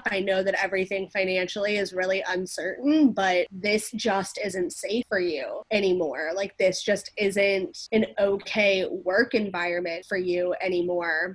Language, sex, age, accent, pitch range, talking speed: English, female, 20-39, American, 190-225 Hz, 145 wpm